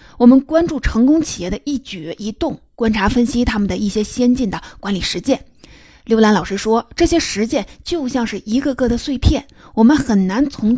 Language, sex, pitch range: Chinese, female, 205-255 Hz